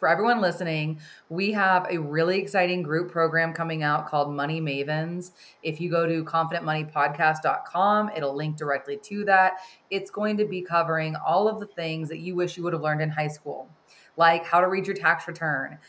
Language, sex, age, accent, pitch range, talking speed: English, female, 20-39, American, 155-185 Hz, 195 wpm